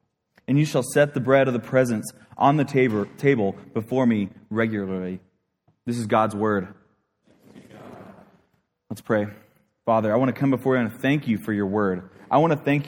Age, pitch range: 20-39, 110-140 Hz